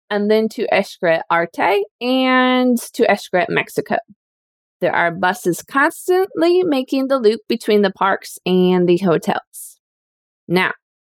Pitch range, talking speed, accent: 190-280 Hz, 125 wpm, American